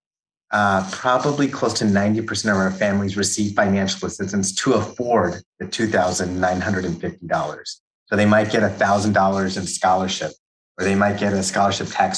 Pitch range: 95-115 Hz